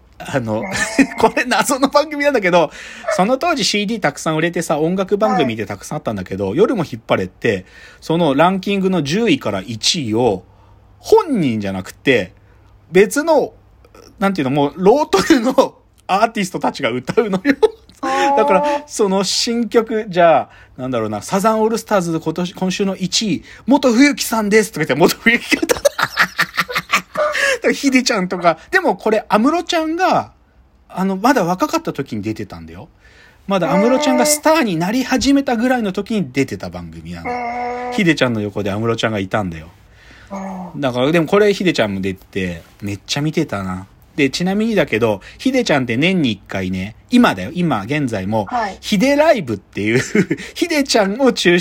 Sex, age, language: male, 40-59, Japanese